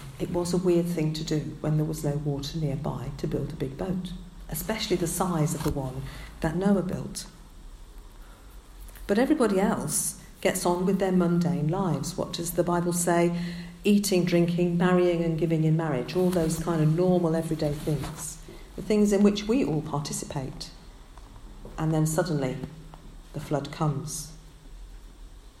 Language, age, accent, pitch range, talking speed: English, 50-69, British, 150-180 Hz, 160 wpm